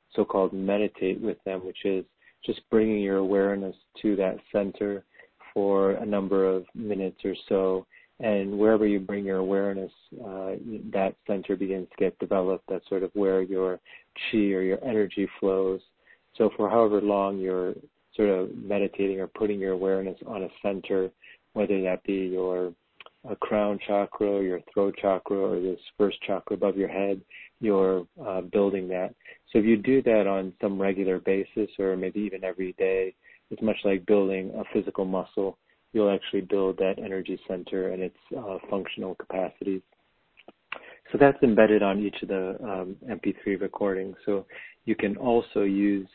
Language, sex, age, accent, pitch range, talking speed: English, male, 40-59, American, 95-100 Hz, 165 wpm